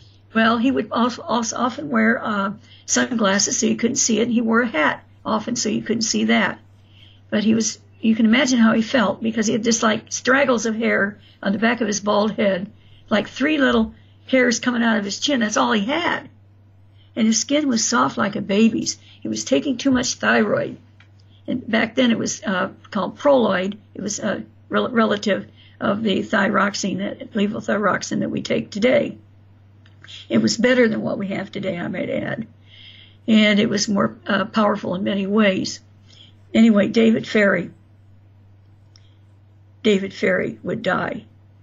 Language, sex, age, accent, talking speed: English, female, 60-79, American, 180 wpm